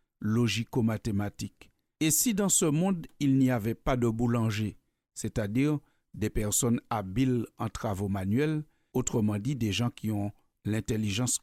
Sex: male